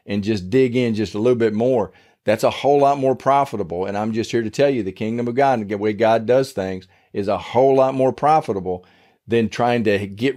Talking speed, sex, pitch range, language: 245 wpm, male, 110-130 Hz, English